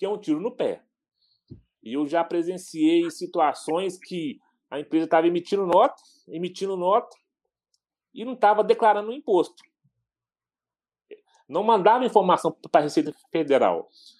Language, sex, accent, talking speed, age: Portuguese, male, Brazilian, 135 wpm, 40-59